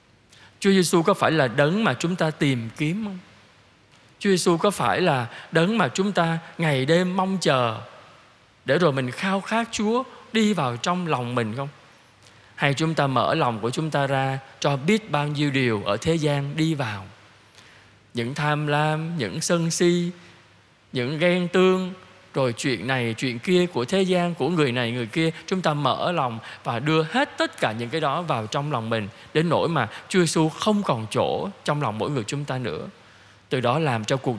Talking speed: 200 wpm